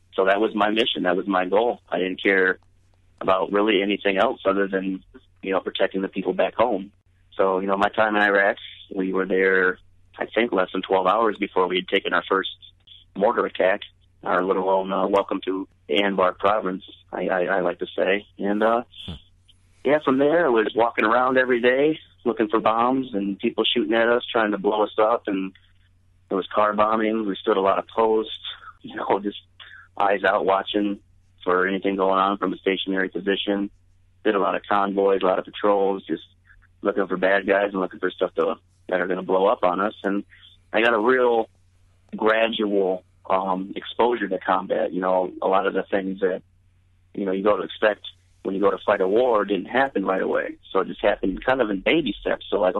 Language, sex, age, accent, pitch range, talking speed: English, male, 40-59, American, 90-100 Hz, 210 wpm